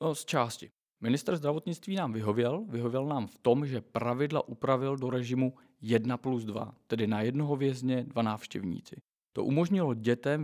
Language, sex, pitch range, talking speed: Czech, male, 120-140 Hz, 155 wpm